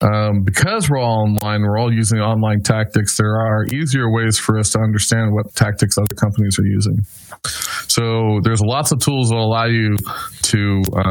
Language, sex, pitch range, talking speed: English, male, 105-125 Hz, 185 wpm